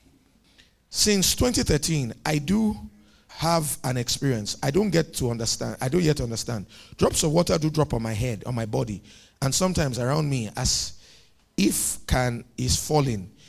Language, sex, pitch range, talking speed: English, male, 115-165 Hz, 160 wpm